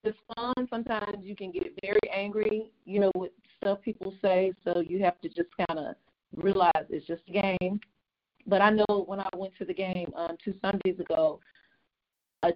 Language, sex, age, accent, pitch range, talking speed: English, female, 30-49, American, 175-205 Hz, 190 wpm